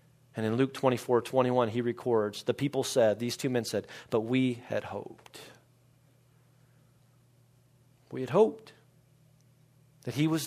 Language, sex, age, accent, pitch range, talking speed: English, male, 40-59, American, 125-145 Hz, 140 wpm